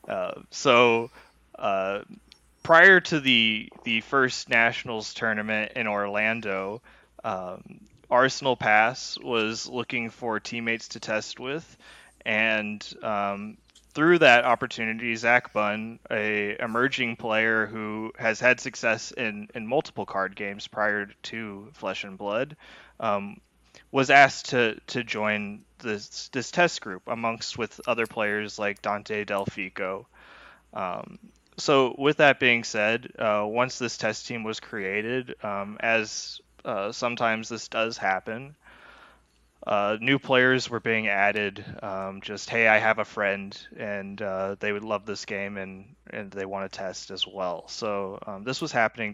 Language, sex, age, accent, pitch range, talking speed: English, male, 20-39, American, 105-120 Hz, 145 wpm